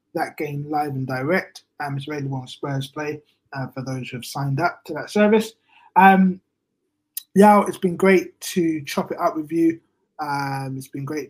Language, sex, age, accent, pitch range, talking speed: English, male, 20-39, British, 135-170 Hz, 195 wpm